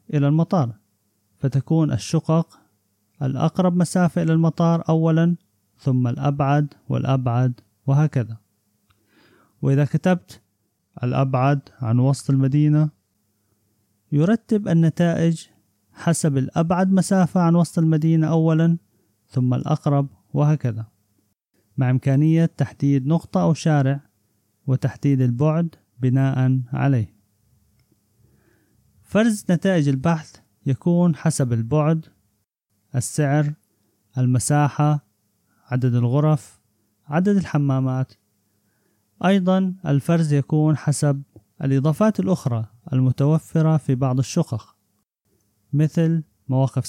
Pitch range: 110-160 Hz